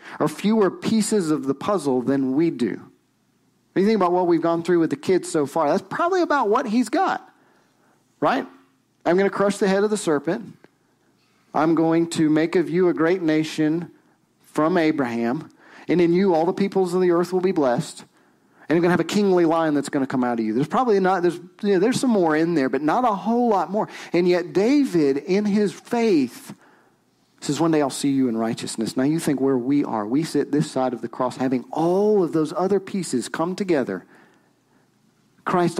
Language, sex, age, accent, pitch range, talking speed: English, male, 40-59, American, 145-190 Hz, 215 wpm